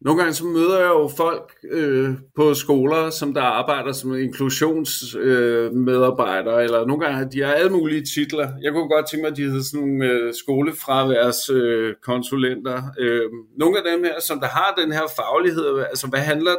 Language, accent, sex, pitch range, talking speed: Danish, native, male, 130-160 Hz, 185 wpm